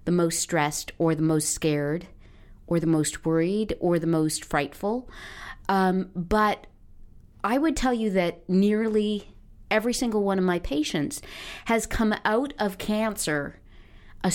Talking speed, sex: 145 wpm, female